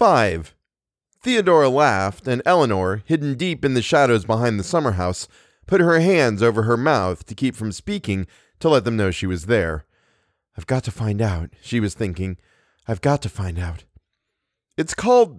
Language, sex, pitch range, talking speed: English, male, 90-135 Hz, 180 wpm